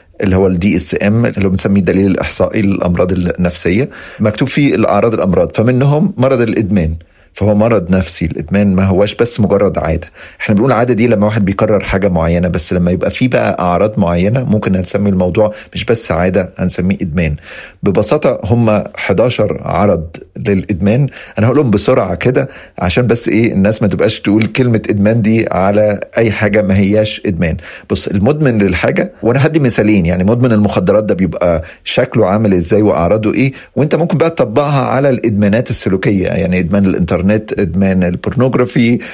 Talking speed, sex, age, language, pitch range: 160 wpm, male, 40-59, Arabic, 95-115 Hz